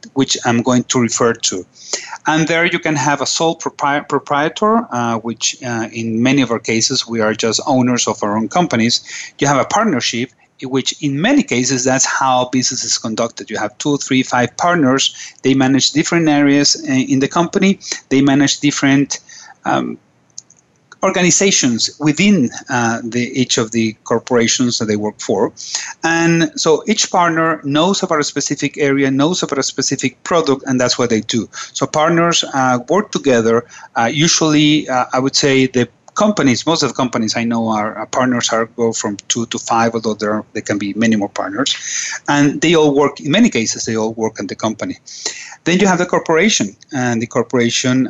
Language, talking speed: English, 185 wpm